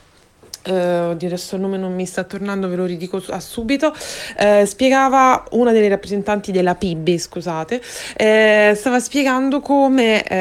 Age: 20-39